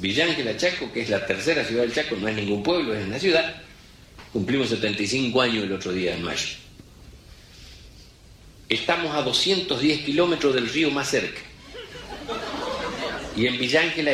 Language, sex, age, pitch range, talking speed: Spanish, male, 50-69, 120-180 Hz, 150 wpm